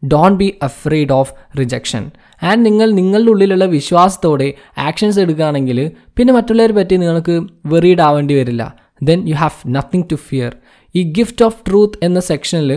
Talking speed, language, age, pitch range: 155 wpm, Malayalam, 20-39, 145-200 Hz